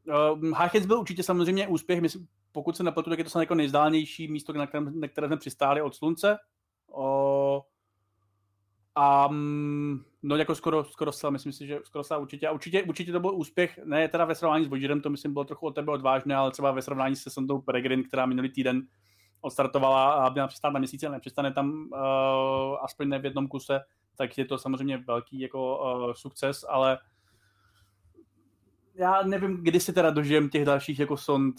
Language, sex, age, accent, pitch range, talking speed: Czech, male, 30-49, native, 135-155 Hz, 185 wpm